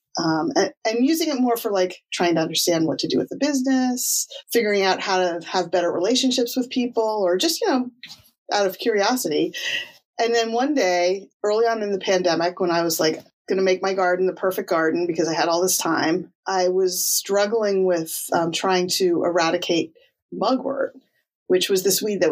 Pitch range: 180-255 Hz